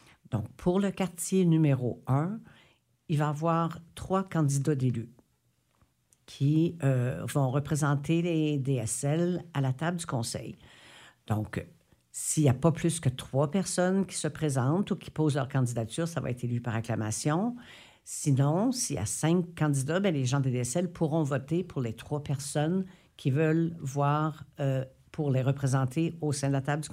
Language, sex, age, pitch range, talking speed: French, female, 60-79, 130-165 Hz, 170 wpm